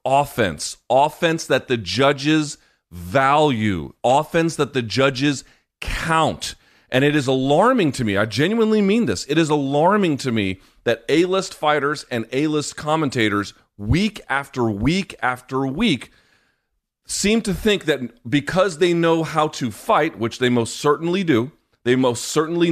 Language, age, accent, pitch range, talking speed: English, 30-49, American, 130-175 Hz, 150 wpm